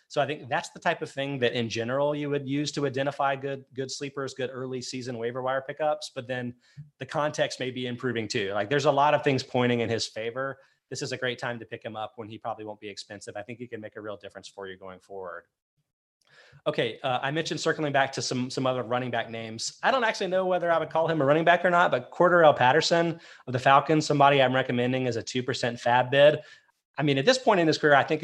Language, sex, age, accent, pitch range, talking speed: English, male, 30-49, American, 120-145 Hz, 255 wpm